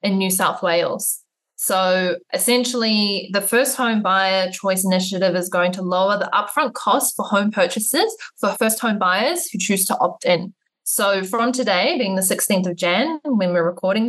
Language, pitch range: English, 185-225 Hz